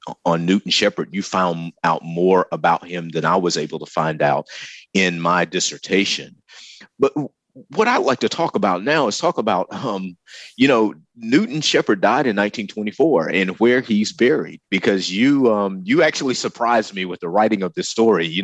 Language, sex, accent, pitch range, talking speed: English, male, American, 90-115 Hz, 180 wpm